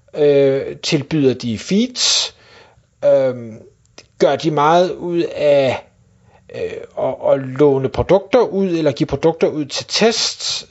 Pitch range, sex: 150-200 Hz, male